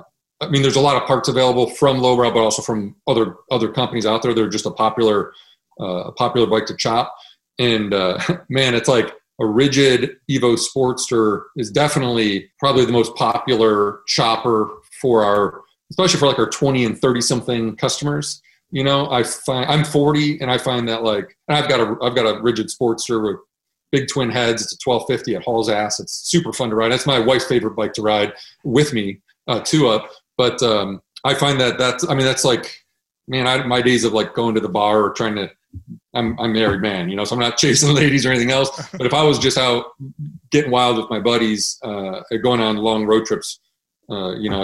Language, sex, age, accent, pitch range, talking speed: English, male, 40-59, American, 110-135 Hz, 215 wpm